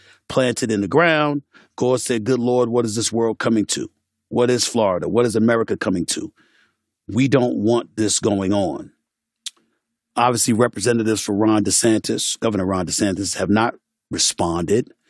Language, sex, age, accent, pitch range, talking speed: English, male, 40-59, American, 100-120 Hz, 155 wpm